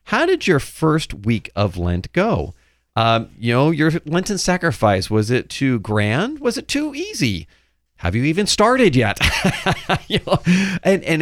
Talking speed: 155 wpm